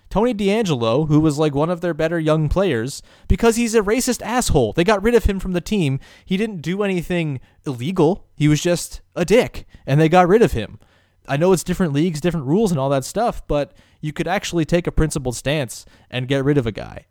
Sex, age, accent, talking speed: male, 20-39, American, 230 wpm